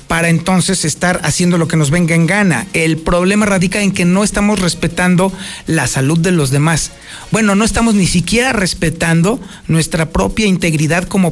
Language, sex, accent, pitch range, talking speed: Spanish, male, Mexican, 160-210 Hz, 175 wpm